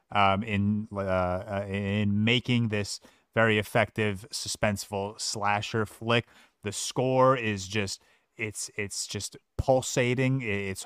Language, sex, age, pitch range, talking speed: English, male, 30-49, 105-130 Hz, 110 wpm